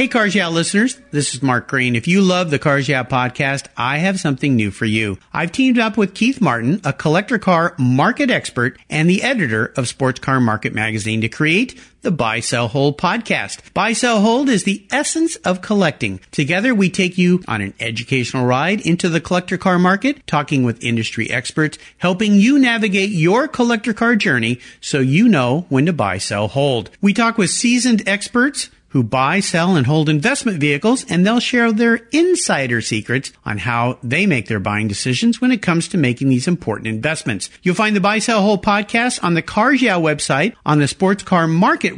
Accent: American